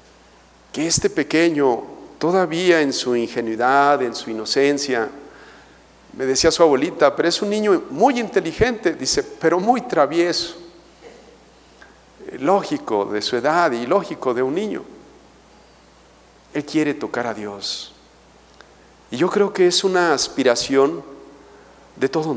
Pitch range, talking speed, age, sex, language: 120-170 Hz, 125 wpm, 50-69, male, Spanish